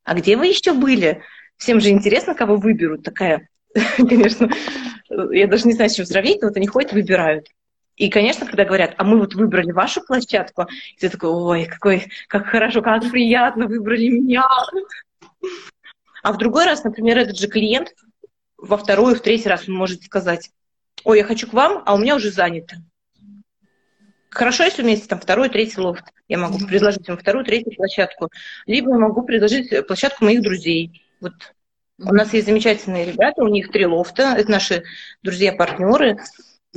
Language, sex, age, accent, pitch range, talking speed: Russian, female, 20-39, native, 195-235 Hz, 165 wpm